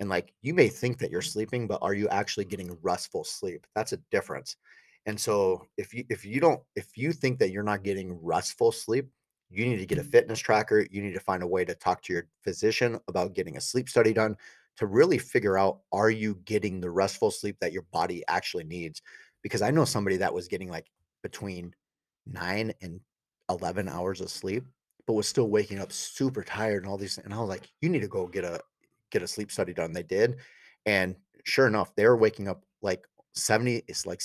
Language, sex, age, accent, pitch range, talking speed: English, male, 30-49, American, 95-125 Hz, 220 wpm